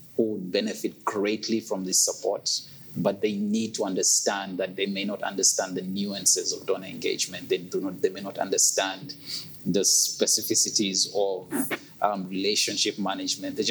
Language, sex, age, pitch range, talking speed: English, male, 30-49, 100-135 Hz, 160 wpm